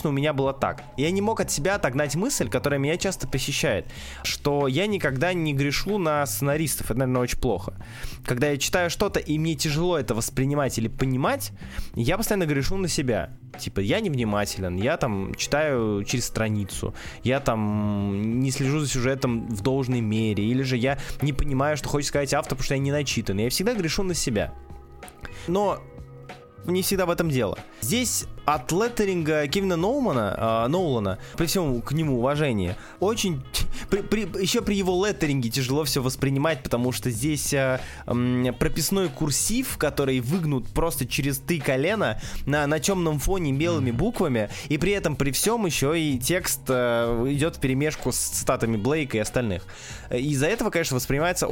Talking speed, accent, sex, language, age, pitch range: 170 wpm, native, male, Russian, 20-39, 125-165 Hz